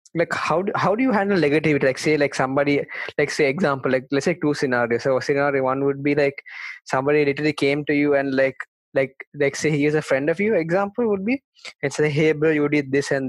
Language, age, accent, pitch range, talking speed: English, 20-39, Indian, 140-165 Hz, 240 wpm